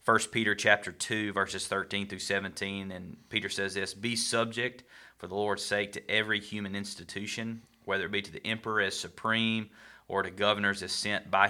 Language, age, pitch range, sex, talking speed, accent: English, 30-49, 95-105 Hz, male, 190 wpm, American